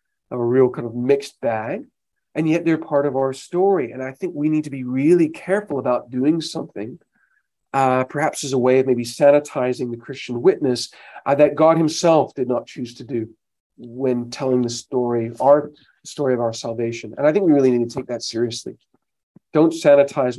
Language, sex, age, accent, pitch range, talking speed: English, male, 40-59, American, 120-145 Hz, 195 wpm